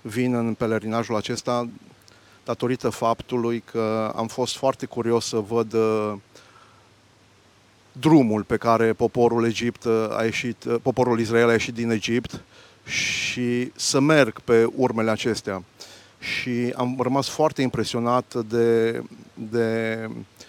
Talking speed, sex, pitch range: 120 wpm, male, 110-125 Hz